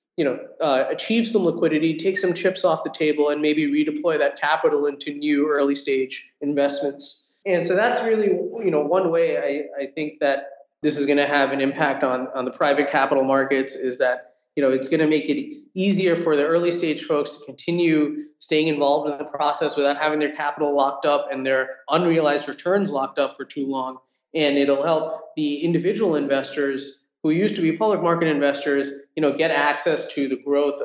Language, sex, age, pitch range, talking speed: English, male, 20-39, 140-170 Hz, 200 wpm